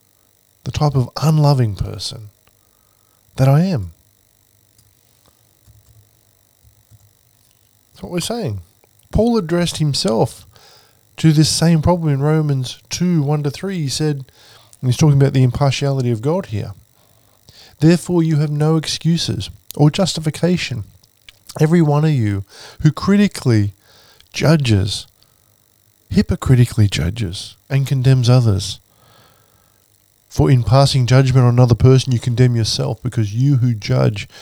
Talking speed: 115 wpm